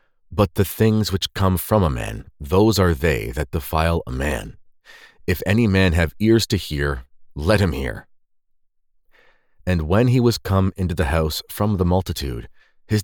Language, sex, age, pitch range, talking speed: English, male, 40-59, 80-105 Hz, 170 wpm